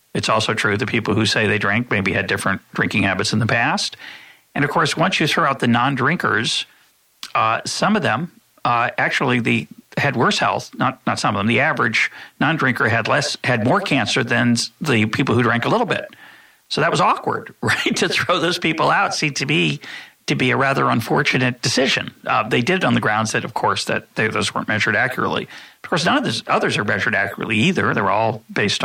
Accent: American